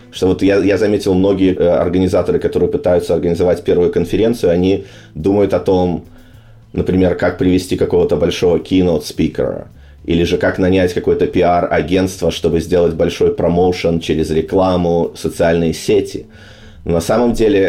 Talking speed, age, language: 135 wpm, 30-49, Russian